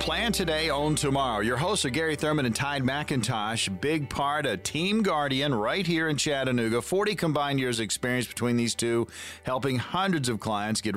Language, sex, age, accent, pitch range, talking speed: English, male, 40-59, American, 110-140 Hz, 185 wpm